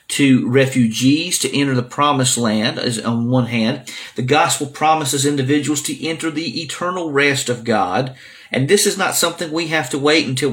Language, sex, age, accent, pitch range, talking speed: English, male, 50-69, American, 125-165 Hz, 180 wpm